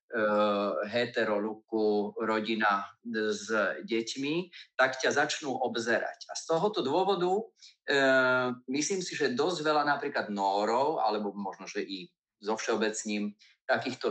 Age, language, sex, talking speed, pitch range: 30-49, Slovak, male, 115 wpm, 105-145 Hz